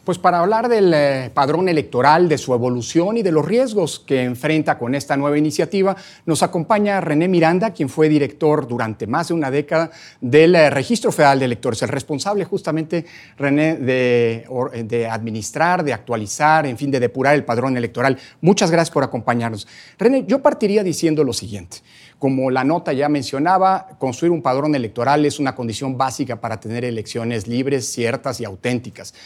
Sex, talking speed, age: male, 170 wpm, 40-59